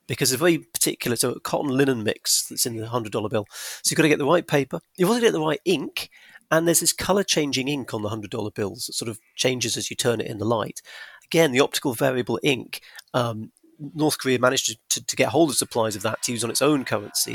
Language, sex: English, male